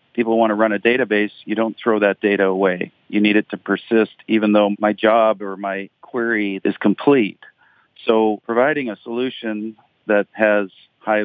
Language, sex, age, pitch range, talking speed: English, male, 40-59, 100-110 Hz, 175 wpm